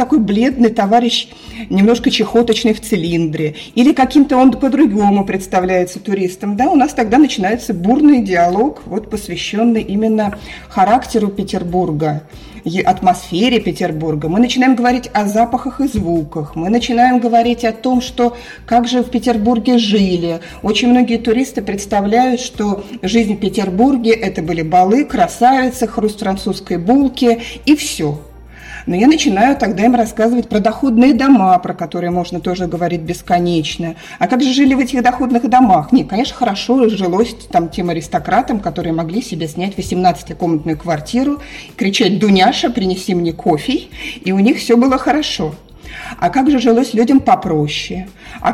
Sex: female